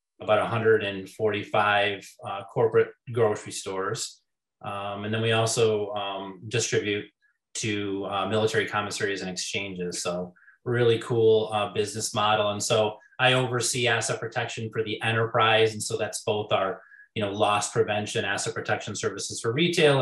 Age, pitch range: 30-49, 105-120 Hz